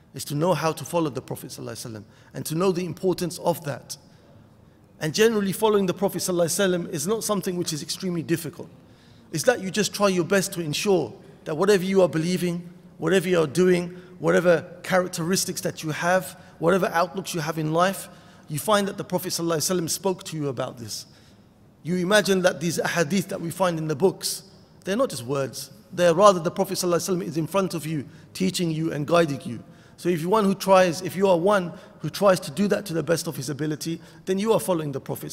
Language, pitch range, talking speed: English, 150-185 Hz, 215 wpm